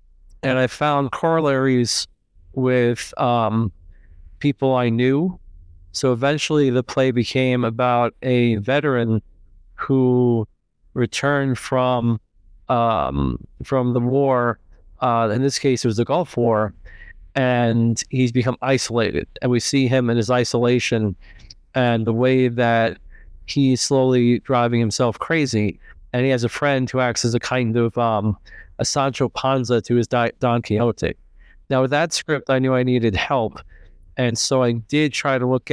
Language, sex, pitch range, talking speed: English, male, 115-130 Hz, 150 wpm